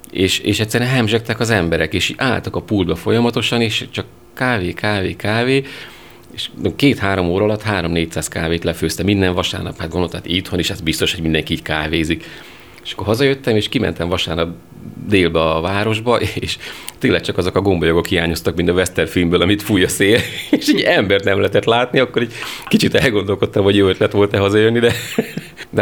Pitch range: 85-105 Hz